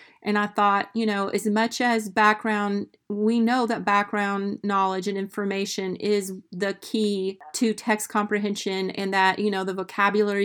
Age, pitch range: 40-59, 195-215 Hz